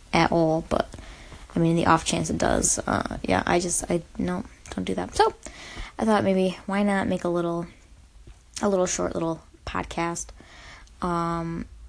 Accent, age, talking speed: American, 20-39, 170 wpm